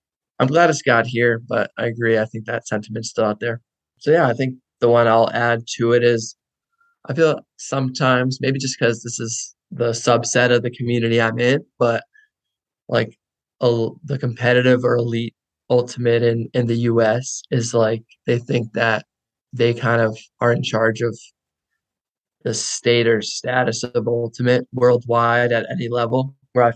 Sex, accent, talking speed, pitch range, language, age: male, American, 175 wpm, 115-125 Hz, English, 20-39